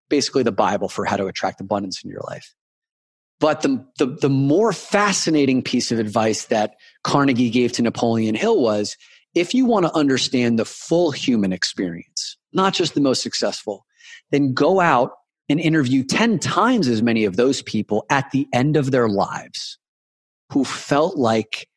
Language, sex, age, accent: English, male, 30-49, American